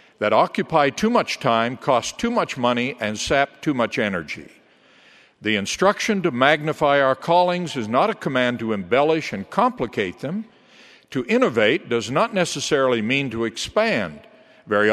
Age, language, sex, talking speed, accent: 60-79, English, male, 155 wpm, American